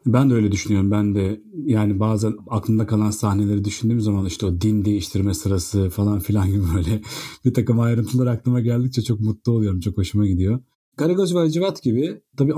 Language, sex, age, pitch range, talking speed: Turkish, male, 40-59, 105-145 Hz, 175 wpm